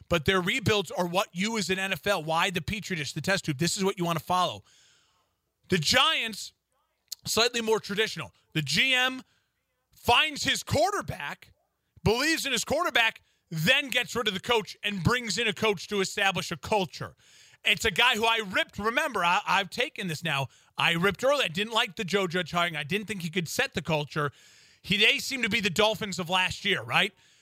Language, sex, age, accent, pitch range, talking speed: English, male, 30-49, American, 185-230 Hz, 205 wpm